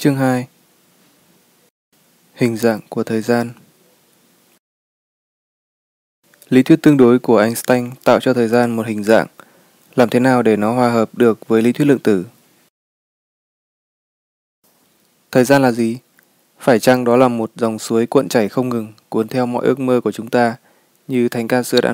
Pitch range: 115-130 Hz